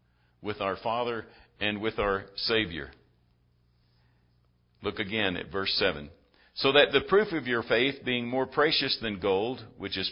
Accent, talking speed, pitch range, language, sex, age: American, 155 wpm, 95-155 Hz, English, male, 50-69